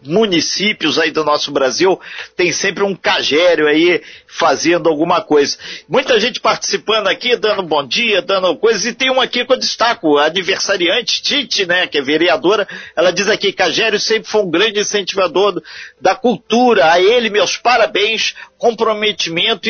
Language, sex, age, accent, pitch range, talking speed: Portuguese, male, 50-69, Brazilian, 175-250 Hz, 160 wpm